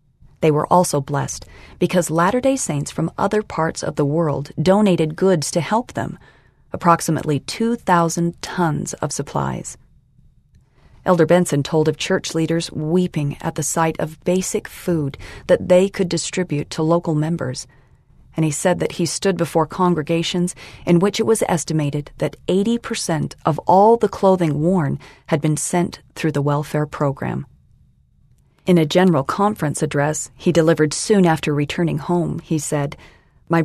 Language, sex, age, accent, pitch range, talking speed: English, female, 40-59, American, 155-180 Hz, 150 wpm